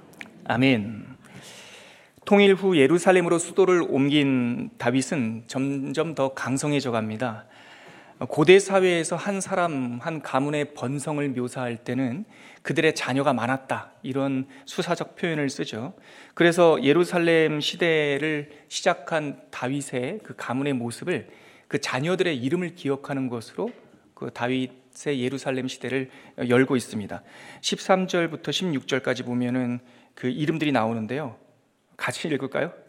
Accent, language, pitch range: native, Korean, 135-175 Hz